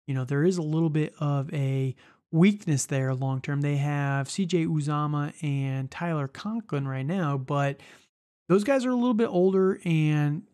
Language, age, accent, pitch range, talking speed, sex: English, 30-49, American, 140-170 Hz, 170 wpm, male